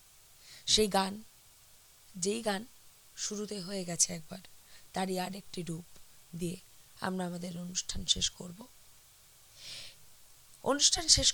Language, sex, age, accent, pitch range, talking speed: Bengali, female, 20-39, native, 170-220 Hz, 105 wpm